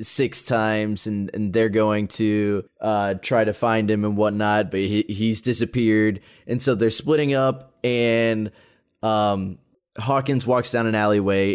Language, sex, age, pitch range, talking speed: English, male, 20-39, 100-115 Hz, 155 wpm